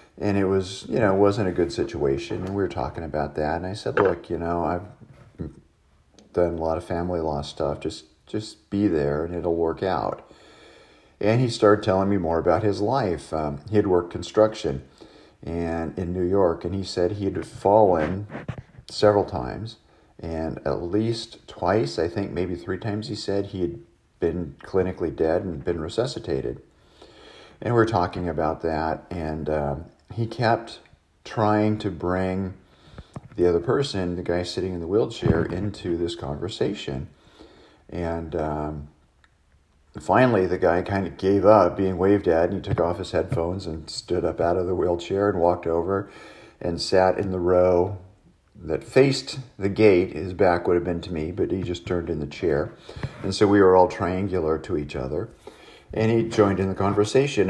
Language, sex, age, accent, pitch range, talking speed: English, male, 50-69, American, 85-105 Hz, 180 wpm